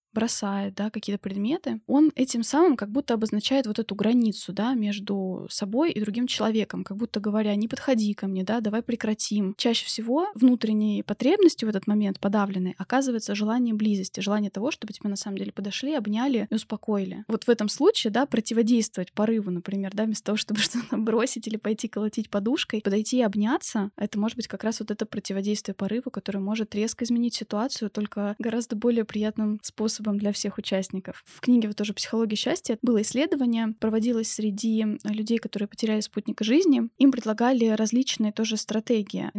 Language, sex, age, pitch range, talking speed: Russian, female, 20-39, 210-240 Hz, 175 wpm